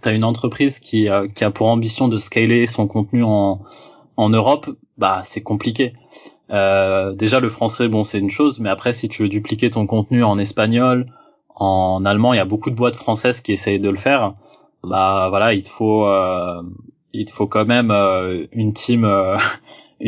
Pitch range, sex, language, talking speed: 105-120 Hz, male, French, 195 wpm